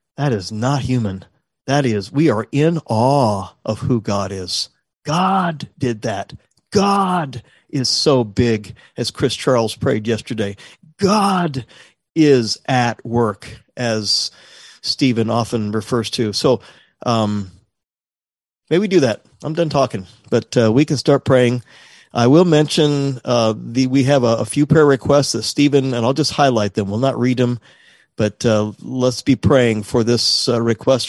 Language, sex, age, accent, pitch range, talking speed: English, male, 40-59, American, 105-135 Hz, 160 wpm